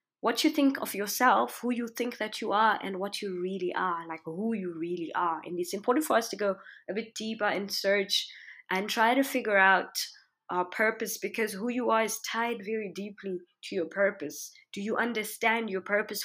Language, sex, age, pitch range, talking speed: English, female, 20-39, 190-235 Hz, 205 wpm